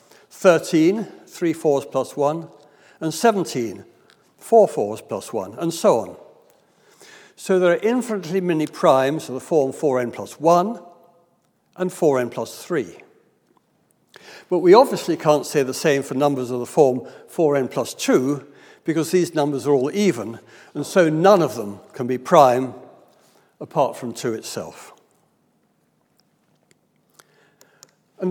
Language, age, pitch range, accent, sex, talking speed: English, 60-79, 140-180 Hz, British, male, 135 wpm